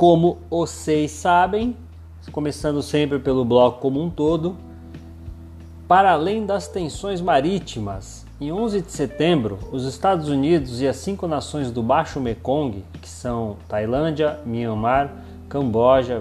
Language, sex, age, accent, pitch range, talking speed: Portuguese, male, 30-49, Brazilian, 120-170 Hz, 125 wpm